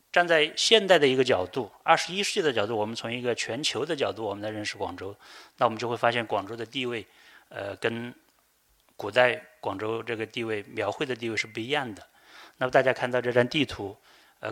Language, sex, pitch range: Chinese, male, 105-130 Hz